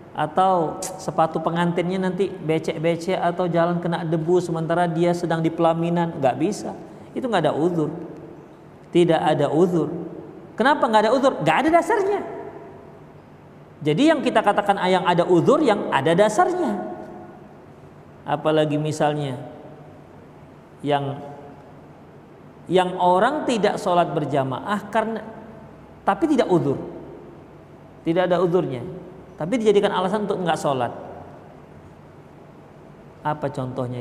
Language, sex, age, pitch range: Indonesian, male, 40-59, 150-195 Hz